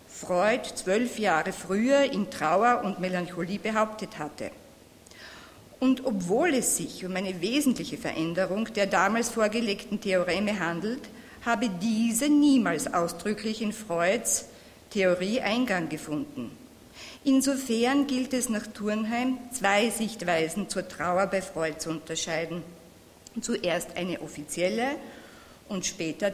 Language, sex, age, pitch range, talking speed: German, female, 50-69, 185-245 Hz, 115 wpm